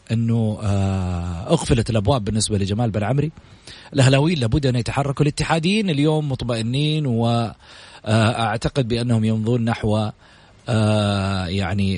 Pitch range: 105-150 Hz